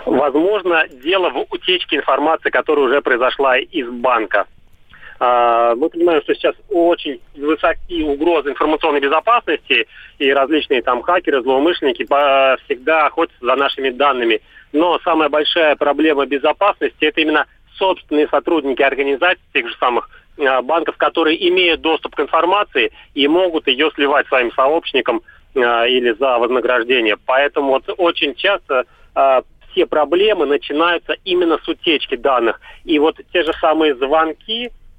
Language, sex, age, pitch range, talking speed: Russian, male, 40-59, 145-200 Hz, 130 wpm